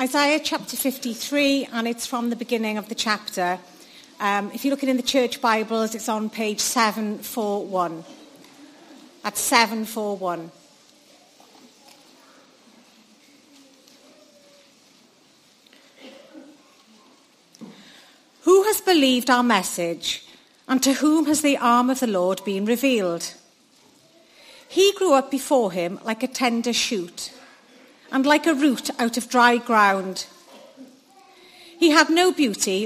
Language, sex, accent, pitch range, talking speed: English, female, British, 215-280 Hz, 115 wpm